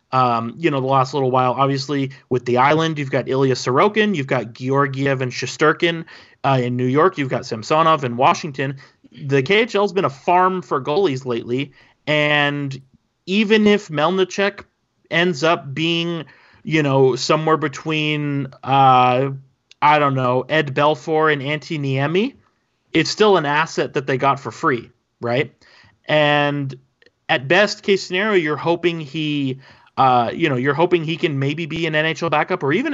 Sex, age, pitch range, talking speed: male, 30-49, 135-160 Hz, 160 wpm